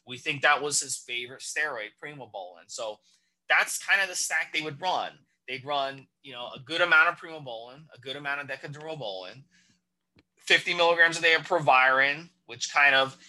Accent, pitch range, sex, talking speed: American, 130-170 Hz, male, 180 wpm